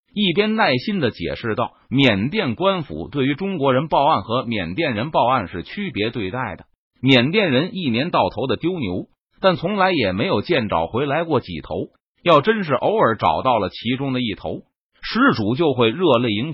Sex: male